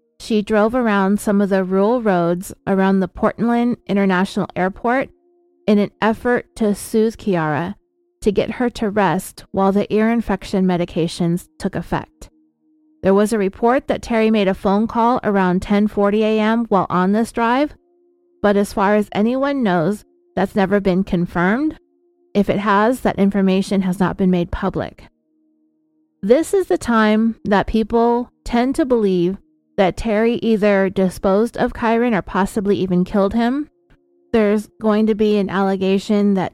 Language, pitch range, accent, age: English, 185-230 Hz, American, 30-49